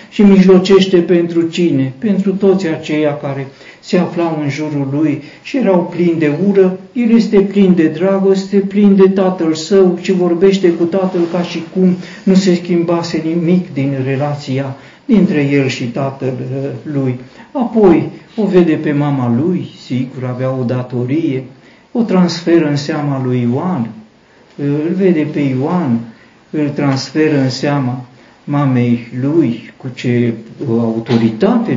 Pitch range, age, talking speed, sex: 135-190 Hz, 60-79, 140 wpm, male